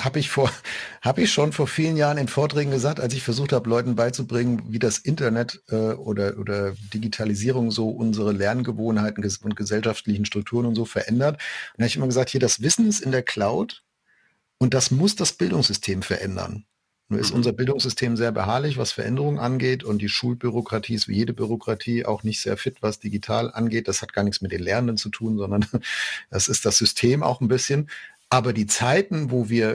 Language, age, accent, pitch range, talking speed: German, 50-69, German, 105-130 Hz, 200 wpm